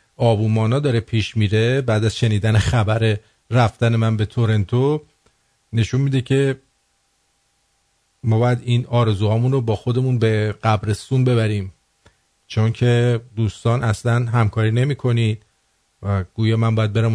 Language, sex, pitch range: English, male, 100-130 Hz